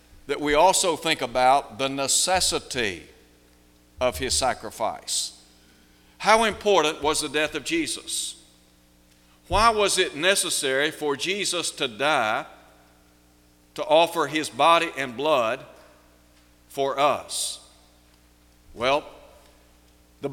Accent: American